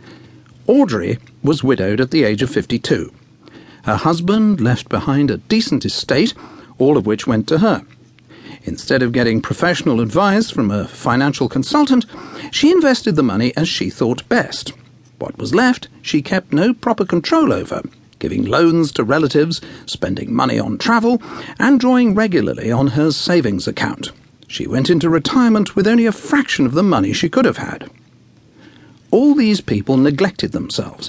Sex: male